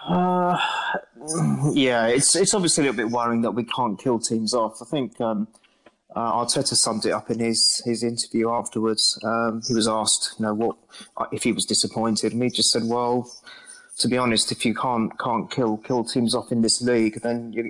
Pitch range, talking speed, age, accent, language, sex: 115-125 Hz, 205 wpm, 30-49, British, English, male